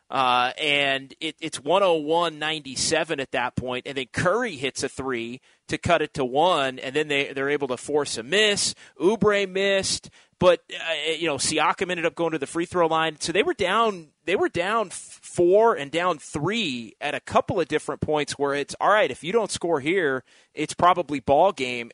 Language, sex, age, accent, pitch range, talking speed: English, male, 30-49, American, 135-170 Hz, 210 wpm